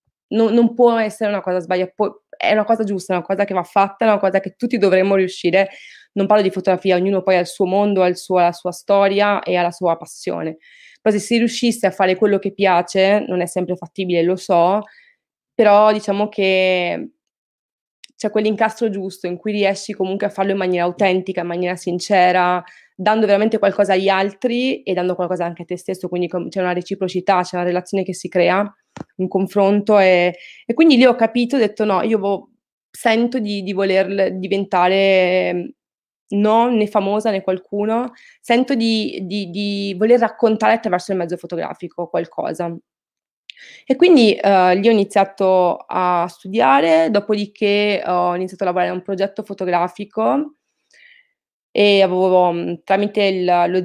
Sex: female